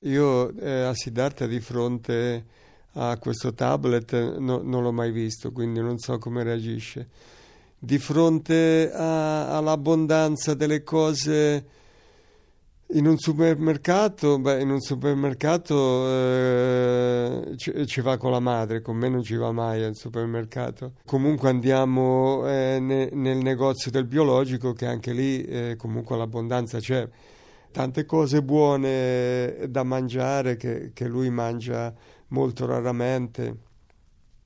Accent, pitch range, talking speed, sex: native, 120-140 Hz, 125 wpm, male